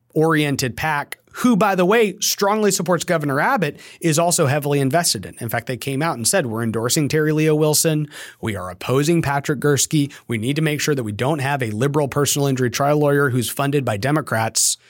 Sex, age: male, 30-49